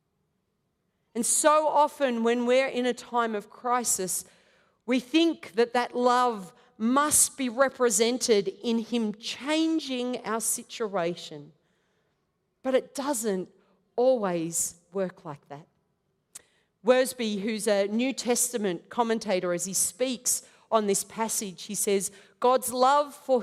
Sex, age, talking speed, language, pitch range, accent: female, 40-59, 120 wpm, English, 195-255 Hz, Australian